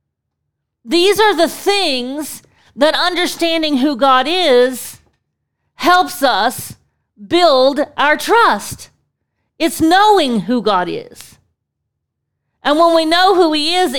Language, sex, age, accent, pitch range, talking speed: English, female, 40-59, American, 260-335 Hz, 110 wpm